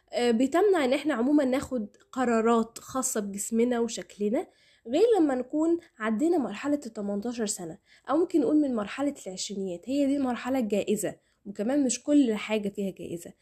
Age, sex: 10-29, female